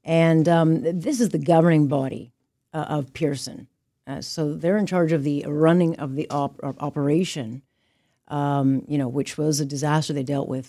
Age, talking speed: 50-69, 175 wpm